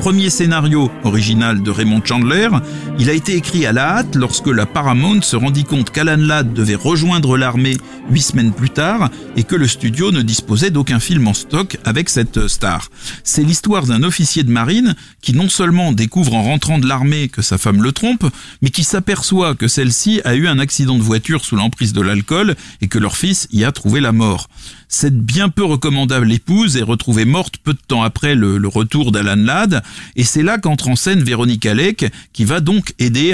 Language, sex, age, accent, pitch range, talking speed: French, male, 40-59, French, 110-155 Hz, 205 wpm